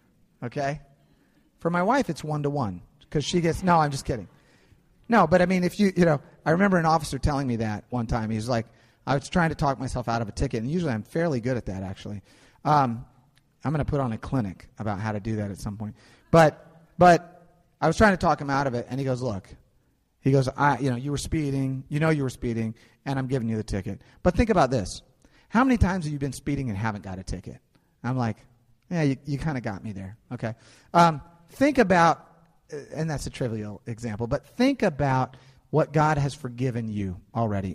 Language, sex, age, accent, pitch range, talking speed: English, male, 30-49, American, 115-155 Hz, 225 wpm